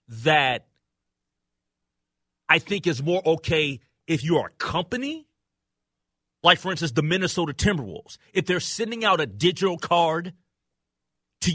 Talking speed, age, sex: 130 wpm, 30-49, male